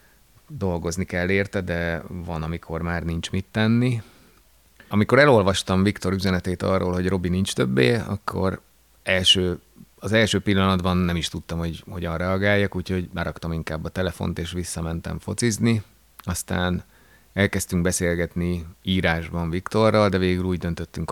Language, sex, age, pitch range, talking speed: Hungarian, male, 30-49, 85-95 Hz, 135 wpm